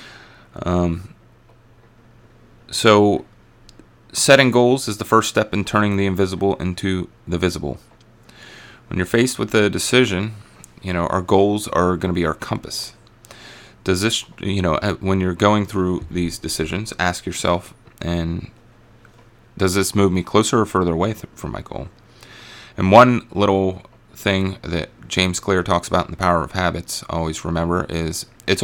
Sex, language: male, English